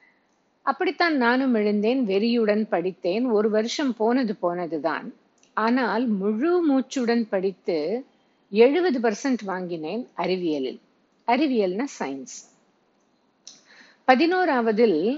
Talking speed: 80 wpm